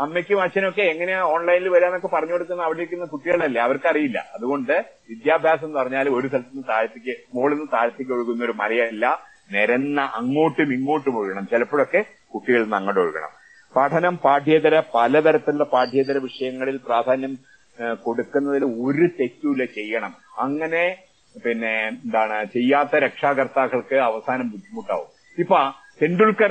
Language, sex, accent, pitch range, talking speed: Malayalam, male, native, 130-180 Hz, 120 wpm